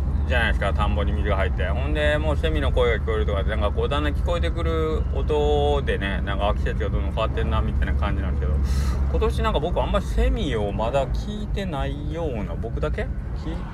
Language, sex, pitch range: Japanese, male, 70-110 Hz